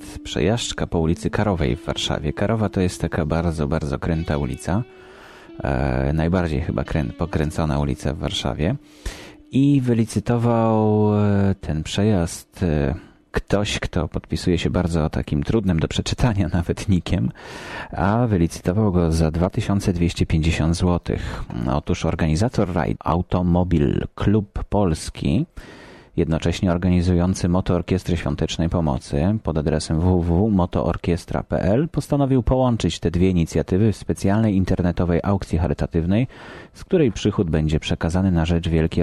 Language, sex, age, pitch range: Polish, male, 30-49, 80-100 Hz